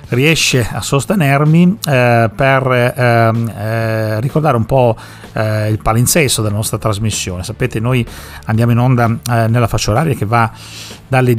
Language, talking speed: Italian, 150 wpm